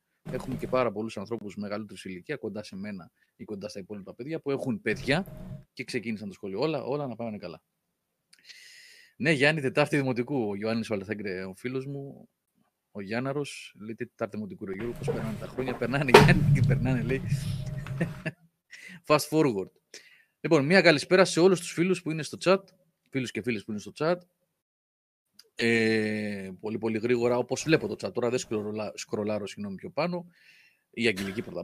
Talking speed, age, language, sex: 175 wpm, 30-49, Greek, male